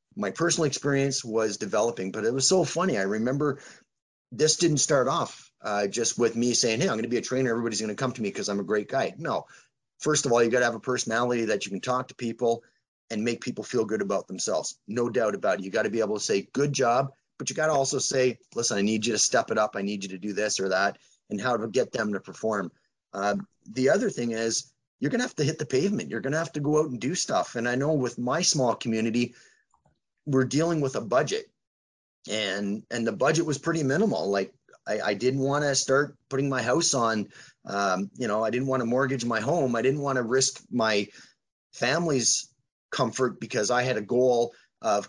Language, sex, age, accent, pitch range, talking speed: English, male, 30-49, American, 115-140 Hz, 240 wpm